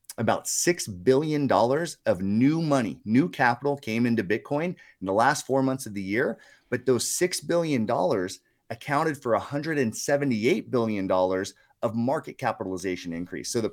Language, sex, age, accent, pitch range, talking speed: English, male, 30-49, American, 105-140 Hz, 145 wpm